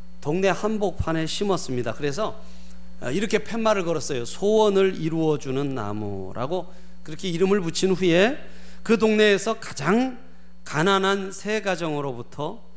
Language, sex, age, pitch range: Korean, male, 40-59, 120-185 Hz